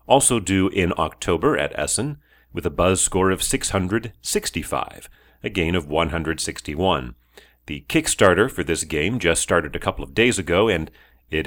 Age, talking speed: 40-59, 155 wpm